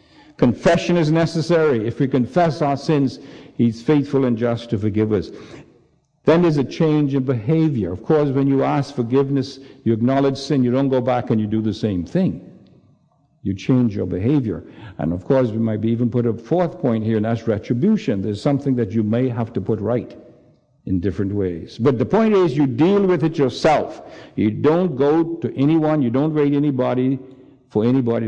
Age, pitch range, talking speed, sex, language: 60-79, 110-140 Hz, 195 wpm, male, English